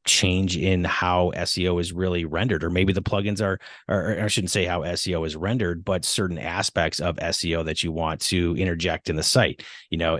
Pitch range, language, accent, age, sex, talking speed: 80-95 Hz, English, American, 30-49, male, 205 wpm